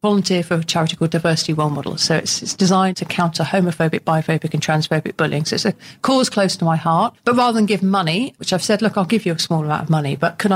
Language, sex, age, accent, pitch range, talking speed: English, female, 40-59, British, 160-205 Hz, 265 wpm